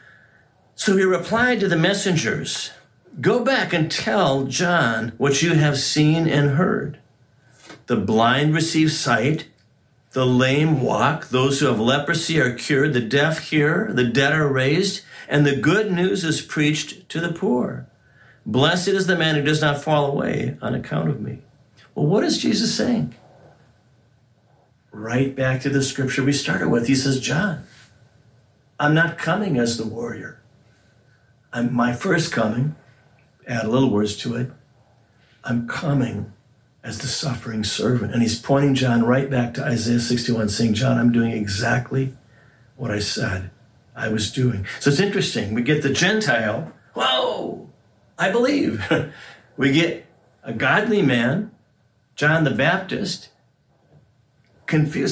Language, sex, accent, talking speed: English, male, American, 145 wpm